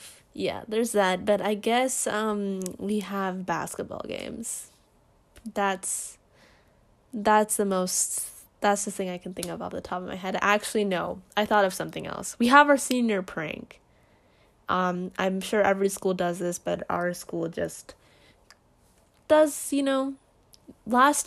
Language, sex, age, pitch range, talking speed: English, female, 10-29, 185-240 Hz, 155 wpm